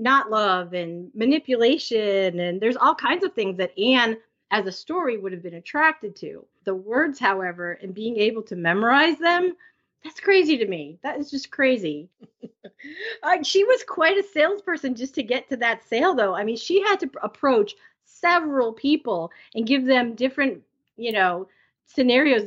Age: 40-59